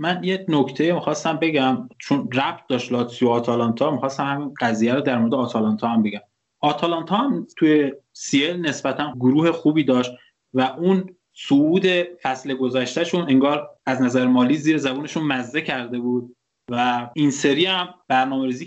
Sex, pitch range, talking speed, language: male, 130-175 Hz, 150 wpm, Persian